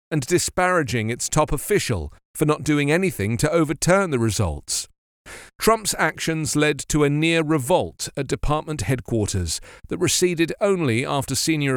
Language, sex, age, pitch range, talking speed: English, male, 40-59, 120-165 Hz, 145 wpm